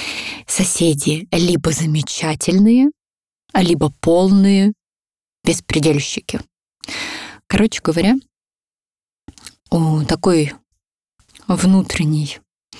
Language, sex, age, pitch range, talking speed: Russian, female, 20-39, 155-205 Hz, 50 wpm